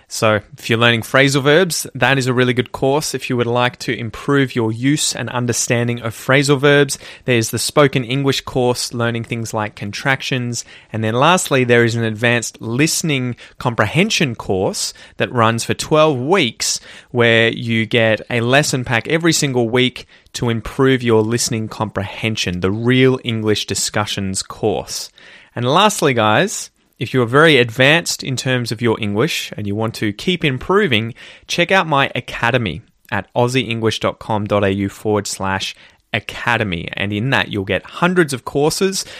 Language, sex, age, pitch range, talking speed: English, male, 20-39, 115-140 Hz, 160 wpm